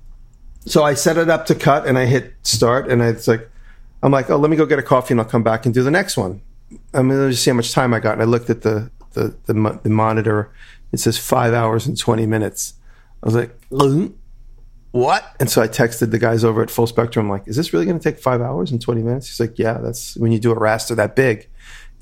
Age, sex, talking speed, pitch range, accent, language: 40-59, male, 265 wpm, 110-120 Hz, American, English